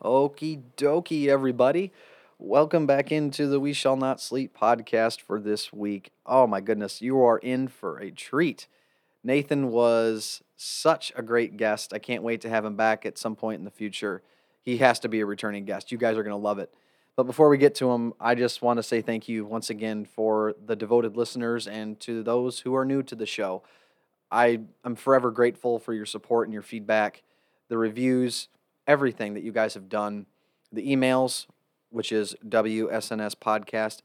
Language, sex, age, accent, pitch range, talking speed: English, male, 30-49, American, 110-130 Hz, 190 wpm